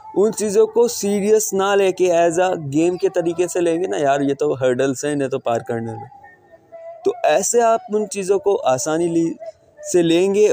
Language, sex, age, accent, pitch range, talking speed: Hindi, male, 20-39, native, 145-210 Hz, 195 wpm